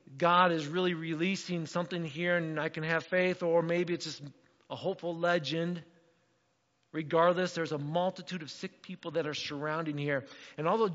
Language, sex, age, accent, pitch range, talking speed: English, male, 50-69, American, 140-180 Hz, 170 wpm